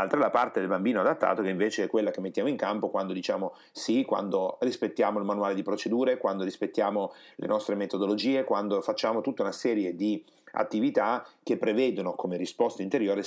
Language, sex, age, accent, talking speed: Italian, male, 30-49, native, 185 wpm